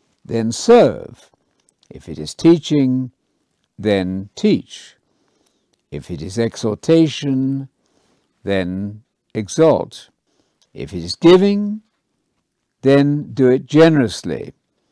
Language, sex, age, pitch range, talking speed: English, male, 60-79, 115-155 Hz, 90 wpm